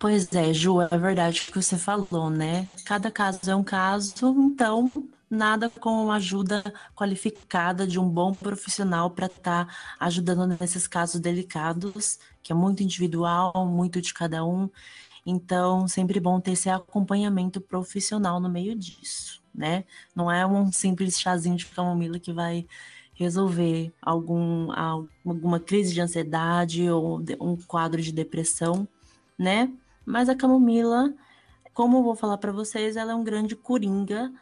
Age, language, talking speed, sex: 20-39, Portuguese, 145 wpm, female